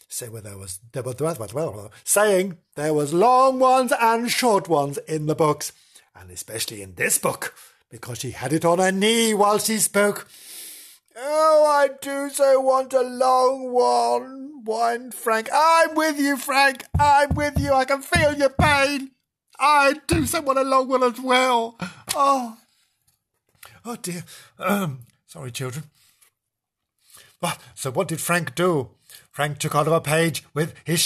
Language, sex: English, male